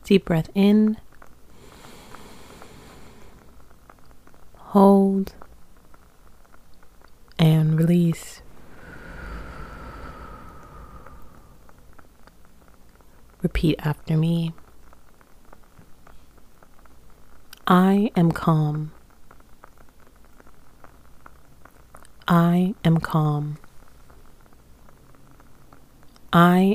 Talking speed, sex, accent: 35 wpm, female, American